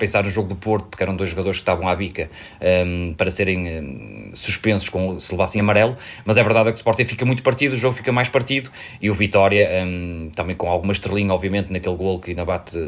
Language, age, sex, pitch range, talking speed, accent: Portuguese, 30-49, male, 95-115 Hz, 215 wpm, Portuguese